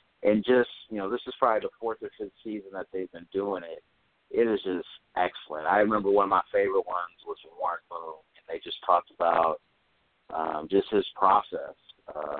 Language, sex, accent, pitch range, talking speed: English, male, American, 95-140 Hz, 200 wpm